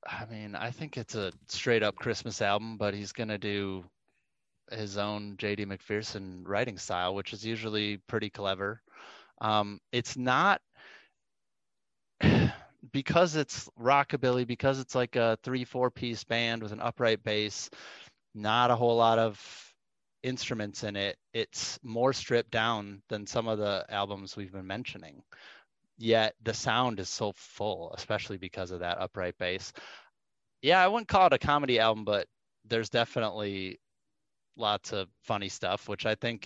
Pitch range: 100-120 Hz